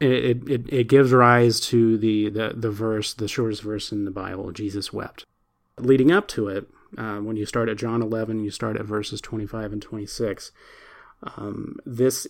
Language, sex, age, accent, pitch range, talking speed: English, male, 30-49, American, 105-120 Hz, 195 wpm